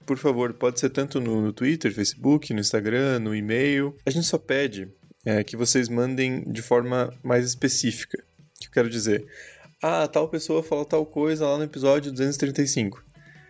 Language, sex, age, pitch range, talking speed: Portuguese, male, 20-39, 120-150 Hz, 170 wpm